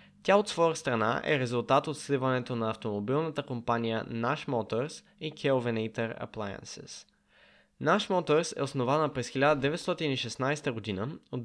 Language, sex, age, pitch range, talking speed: Bulgarian, male, 20-39, 120-155 Hz, 125 wpm